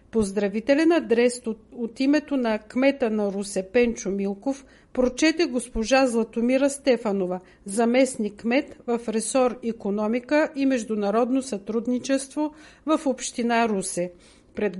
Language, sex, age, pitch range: Bulgarian, female, 50-69, 220-270 Hz